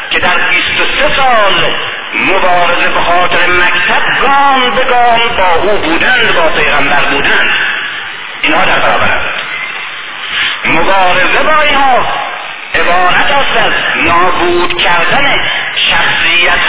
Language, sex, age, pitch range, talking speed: Persian, male, 50-69, 175-275 Hz, 110 wpm